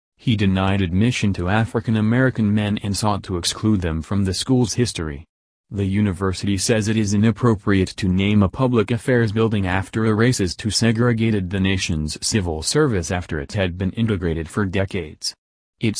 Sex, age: male, 40-59